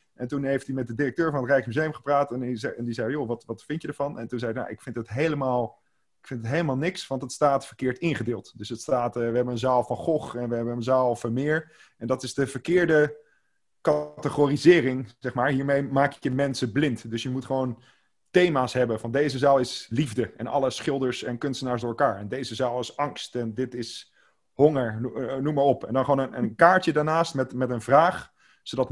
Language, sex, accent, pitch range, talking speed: Dutch, male, Dutch, 125-145 Hz, 235 wpm